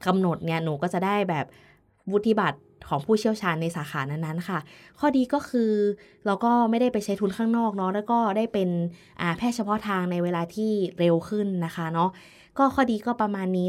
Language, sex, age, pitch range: Thai, female, 20-39, 175-220 Hz